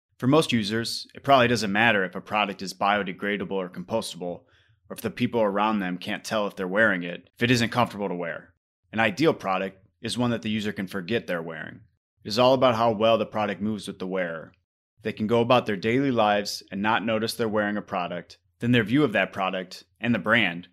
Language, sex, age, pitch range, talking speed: English, male, 30-49, 95-115 Hz, 230 wpm